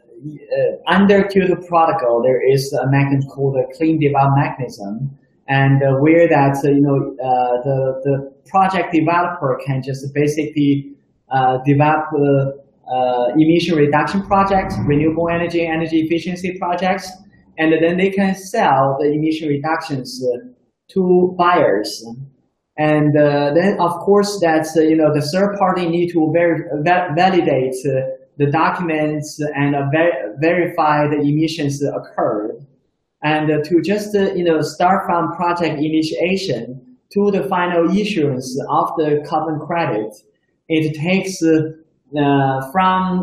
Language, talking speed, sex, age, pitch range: English, 140 wpm, male, 20-39, 140-175 Hz